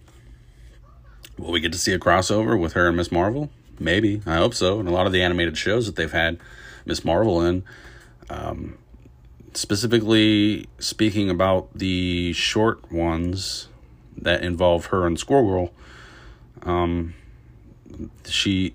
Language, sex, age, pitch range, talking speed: English, male, 30-49, 80-105 Hz, 140 wpm